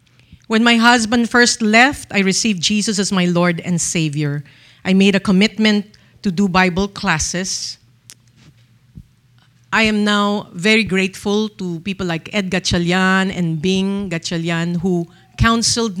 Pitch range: 155-220 Hz